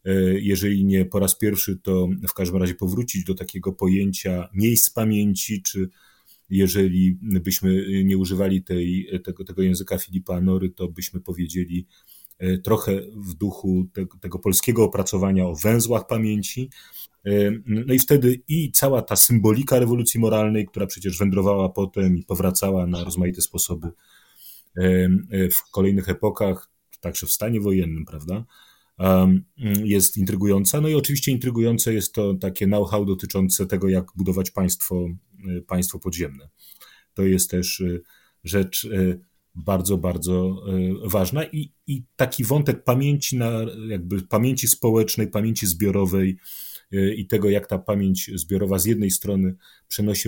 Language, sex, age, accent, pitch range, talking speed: Polish, male, 30-49, native, 95-110 Hz, 130 wpm